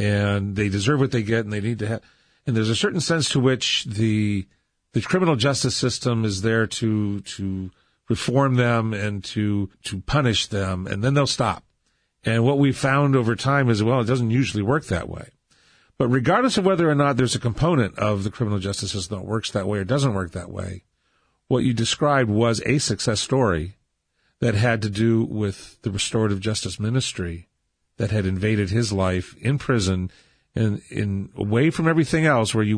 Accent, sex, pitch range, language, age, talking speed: American, male, 105-135 Hz, English, 40-59, 195 wpm